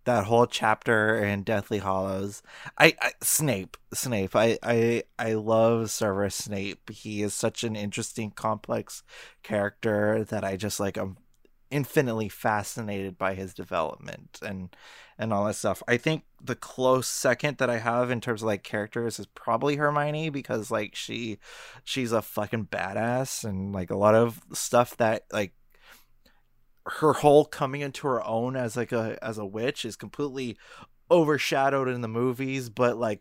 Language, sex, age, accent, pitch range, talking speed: English, male, 20-39, American, 105-125 Hz, 160 wpm